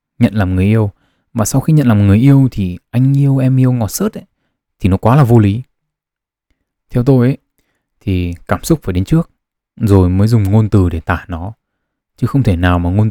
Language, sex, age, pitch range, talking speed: Vietnamese, male, 20-39, 100-140 Hz, 215 wpm